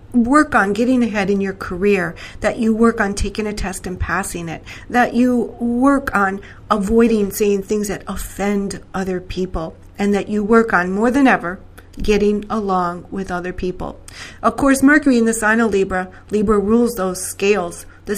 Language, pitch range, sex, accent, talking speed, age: English, 185-230 Hz, female, American, 180 wpm, 40-59